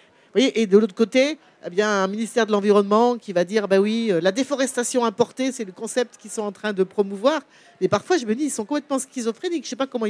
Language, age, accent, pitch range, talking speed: French, 50-69, French, 205-260 Hz, 255 wpm